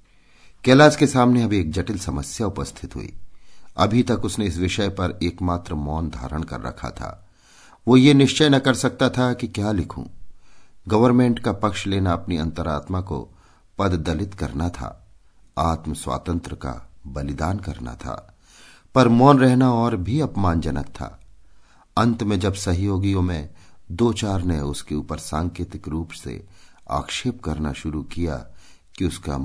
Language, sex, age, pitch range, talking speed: Hindi, male, 50-69, 80-120 Hz, 155 wpm